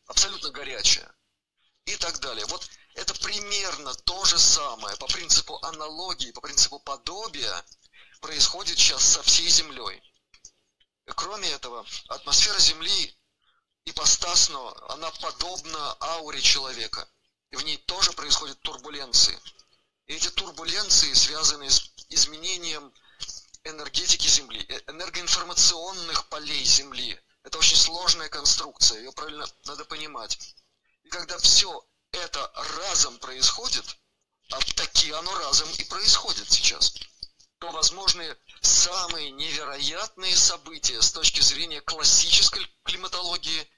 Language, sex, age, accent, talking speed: Russian, male, 30-49, native, 110 wpm